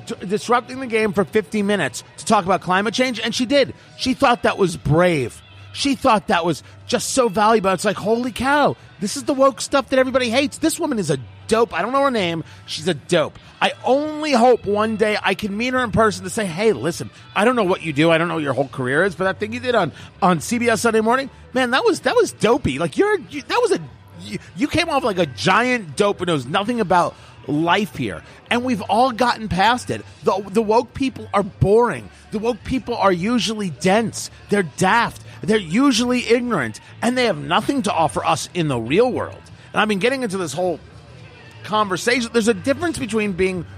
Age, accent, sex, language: 30-49, American, male, English